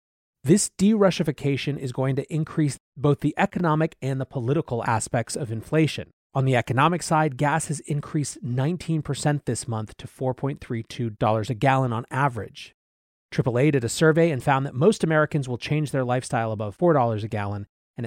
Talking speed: 165 wpm